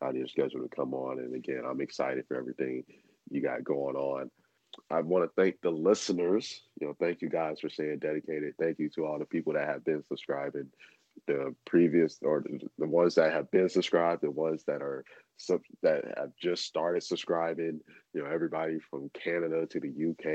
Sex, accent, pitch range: male, American, 75-85 Hz